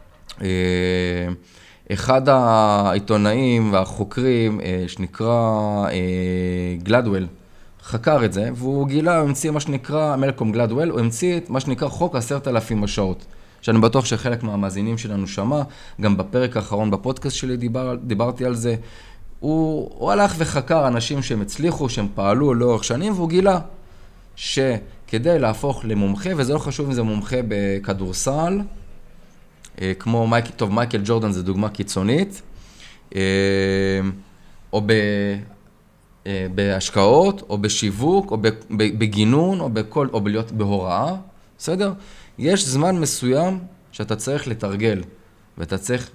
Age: 20-39